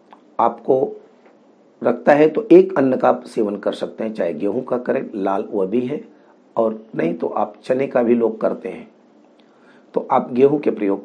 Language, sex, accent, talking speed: Hindi, male, native, 185 wpm